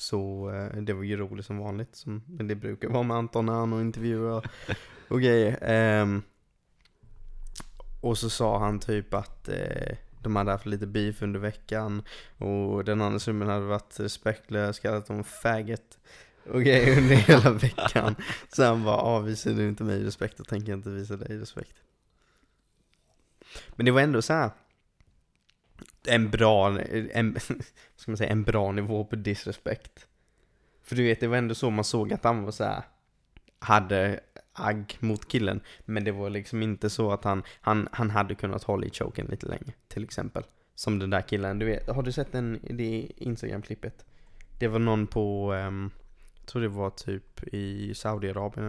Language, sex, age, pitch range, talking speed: Swedish, male, 20-39, 100-115 Hz, 175 wpm